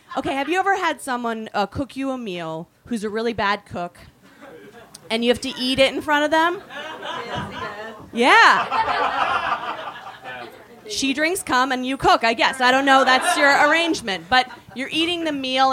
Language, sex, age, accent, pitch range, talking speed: English, female, 30-49, American, 250-335 Hz, 175 wpm